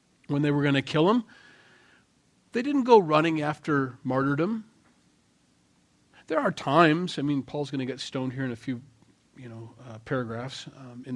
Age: 40-59